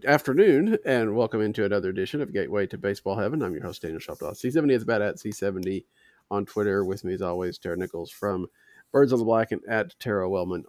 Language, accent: English, American